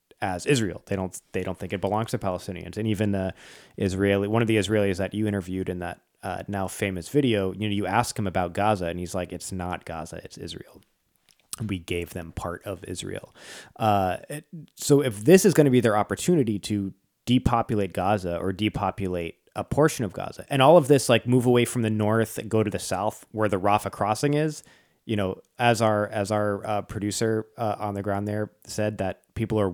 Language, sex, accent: English, male, American